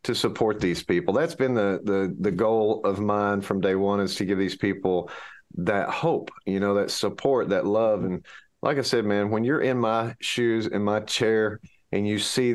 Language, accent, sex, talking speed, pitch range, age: English, American, male, 210 wpm, 105-135 Hz, 40-59